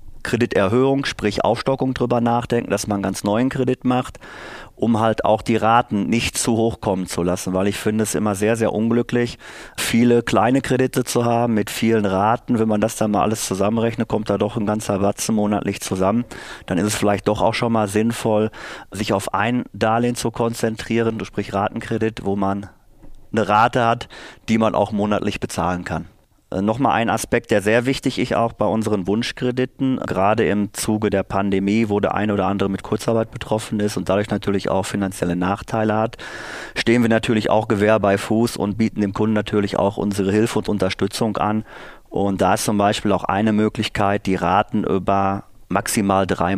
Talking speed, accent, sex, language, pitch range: 185 wpm, German, male, German, 100-115 Hz